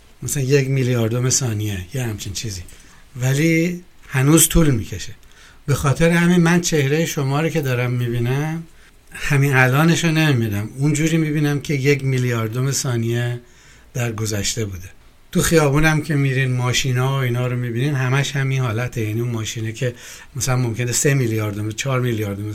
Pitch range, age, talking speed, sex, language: 120-150 Hz, 60-79, 150 wpm, male, Persian